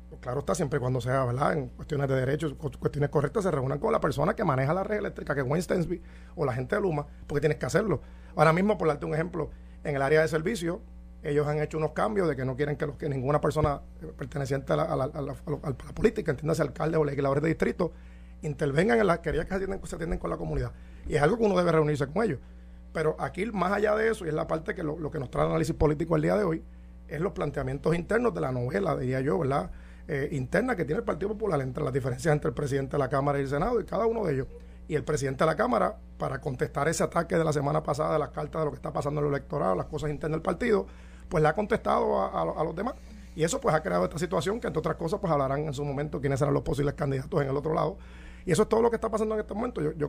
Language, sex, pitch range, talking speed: Spanish, male, 135-160 Hz, 280 wpm